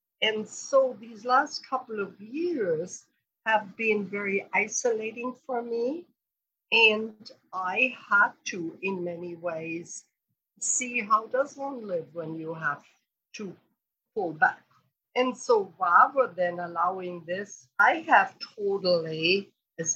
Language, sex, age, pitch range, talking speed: English, female, 50-69, 175-235 Hz, 125 wpm